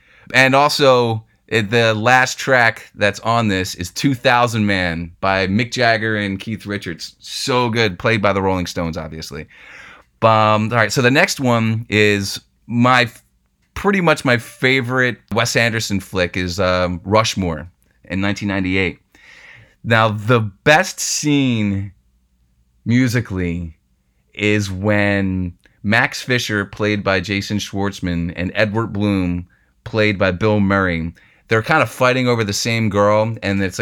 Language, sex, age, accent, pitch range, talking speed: English, male, 30-49, American, 95-120 Hz, 135 wpm